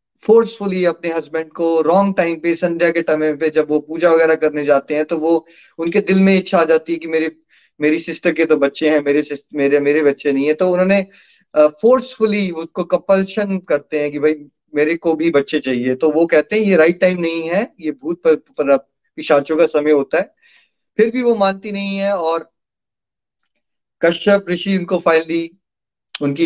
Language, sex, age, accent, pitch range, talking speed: Hindi, male, 30-49, native, 155-180 Hz, 170 wpm